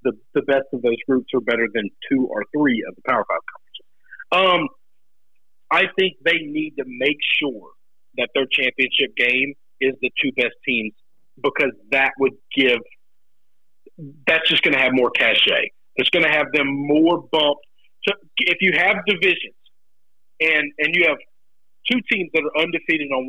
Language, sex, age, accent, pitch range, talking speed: English, male, 50-69, American, 135-175 Hz, 170 wpm